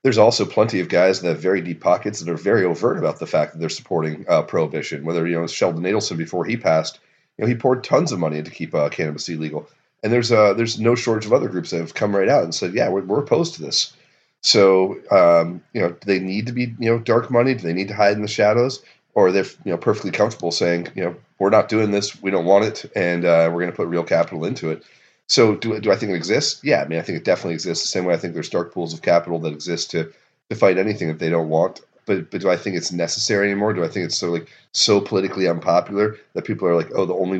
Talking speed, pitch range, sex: 275 wpm, 85-105 Hz, male